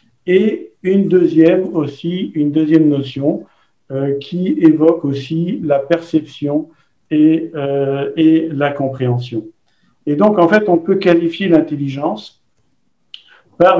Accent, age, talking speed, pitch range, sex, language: French, 50-69, 115 wpm, 150-180 Hz, male, French